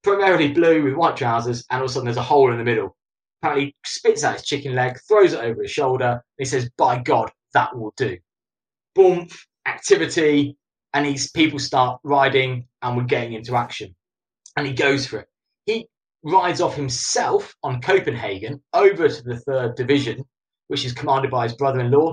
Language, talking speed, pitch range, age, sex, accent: English, 190 wpm, 125-170 Hz, 20-39, male, British